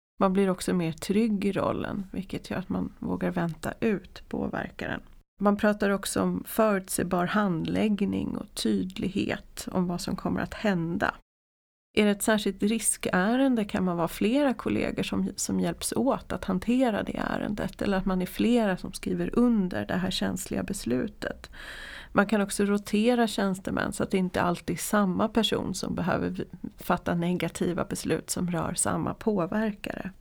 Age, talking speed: 30-49, 160 wpm